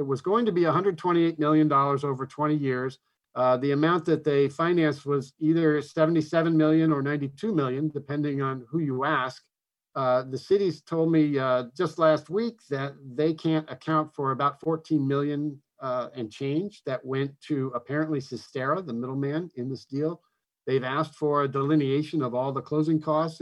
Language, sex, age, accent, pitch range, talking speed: English, male, 50-69, American, 135-155 Hz, 175 wpm